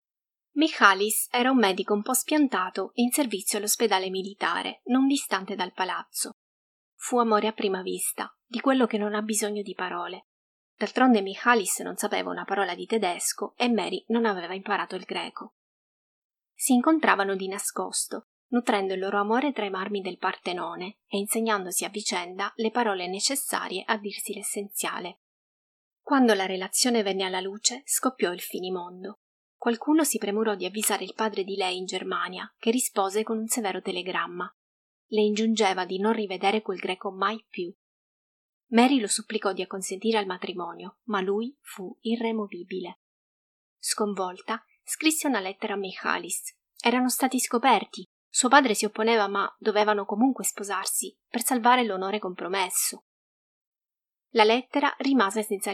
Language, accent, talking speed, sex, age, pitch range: Italian, native, 145 wpm, female, 30-49, 190-235 Hz